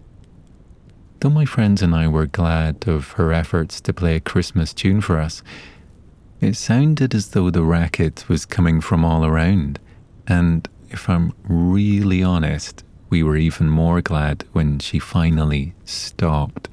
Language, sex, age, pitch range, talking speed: English, male, 30-49, 80-95 Hz, 150 wpm